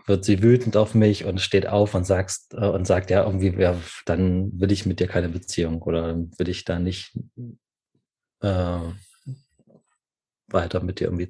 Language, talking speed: German, 160 wpm